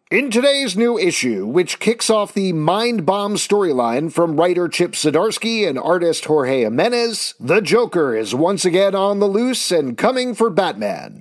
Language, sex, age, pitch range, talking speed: English, male, 40-59, 170-230 Hz, 165 wpm